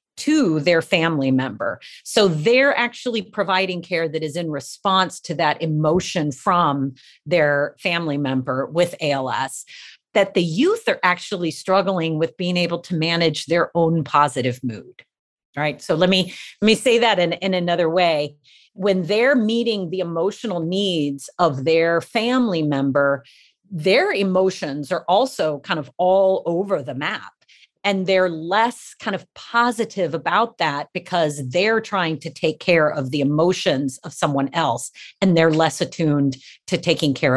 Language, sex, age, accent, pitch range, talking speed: English, female, 40-59, American, 155-200 Hz, 155 wpm